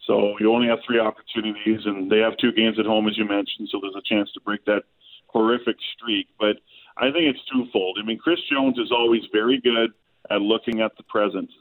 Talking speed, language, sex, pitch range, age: 220 wpm, English, male, 110-145 Hz, 40-59